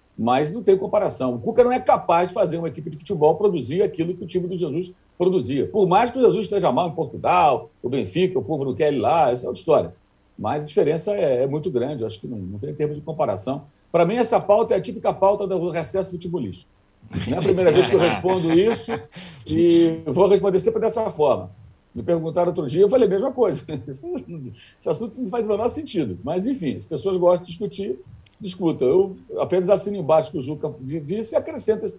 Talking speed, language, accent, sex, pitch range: 225 wpm, Portuguese, Brazilian, male, 145-205 Hz